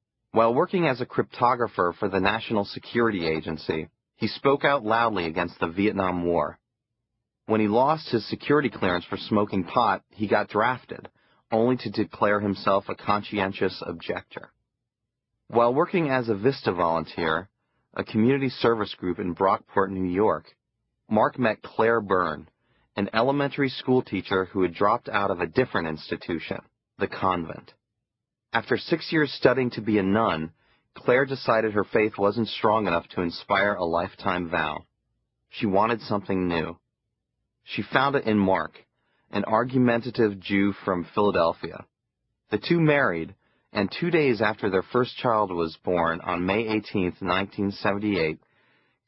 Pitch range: 95-120 Hz